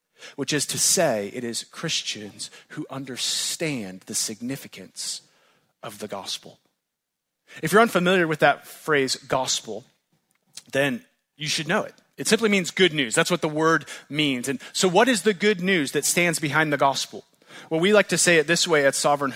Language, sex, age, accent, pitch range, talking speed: English, male, 30-49, American, 155-210 Hz, 180 wpm